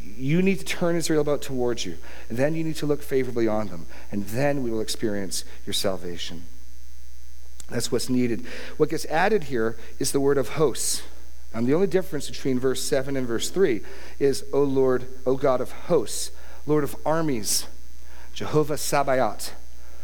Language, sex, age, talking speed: English, male, 40-59, 180 wpm